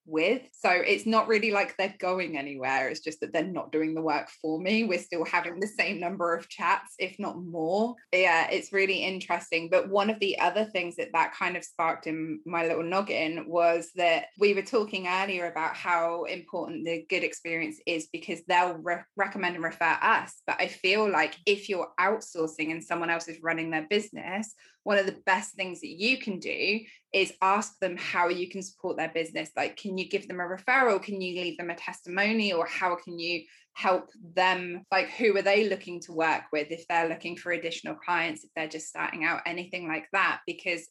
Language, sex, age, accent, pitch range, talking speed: English, female, 20-39, British, 165-195 Hz, 210 wpm